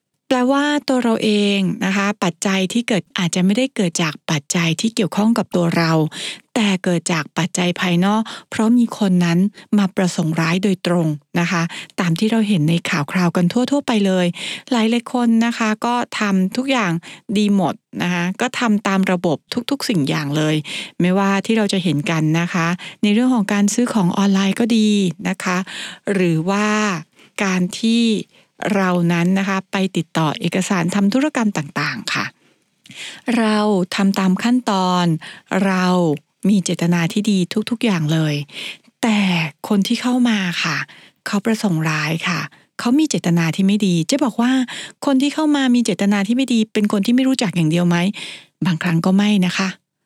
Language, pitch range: English, 175-225 Hz